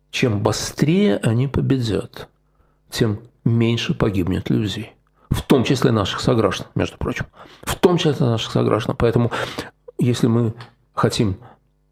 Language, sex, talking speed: Russian, male, 120 wpm